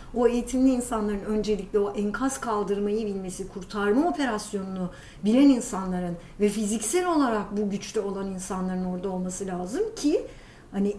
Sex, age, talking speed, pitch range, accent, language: female, 50-69, 130 wpm, 200-250 Hz, native, Turkish